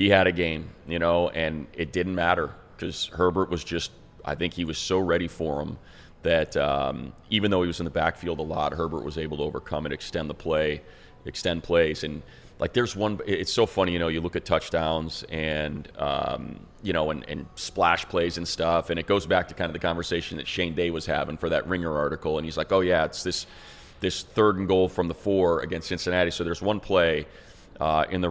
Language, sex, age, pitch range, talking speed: English, male, 30-49, 80-95 Hz, 230 wpm